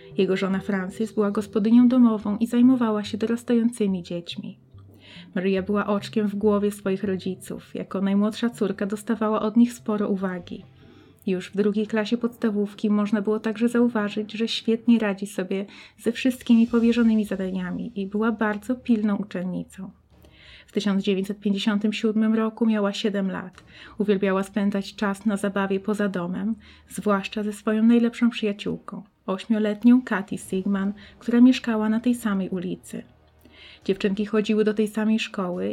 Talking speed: 135 wpm